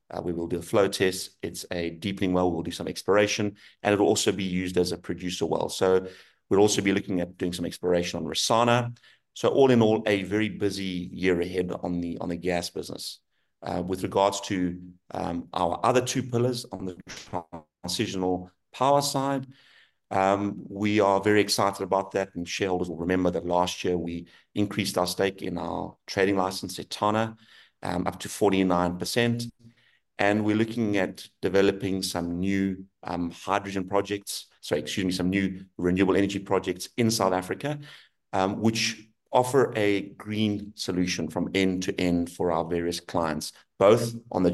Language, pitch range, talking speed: English, 90-105 Hz, 175 wpm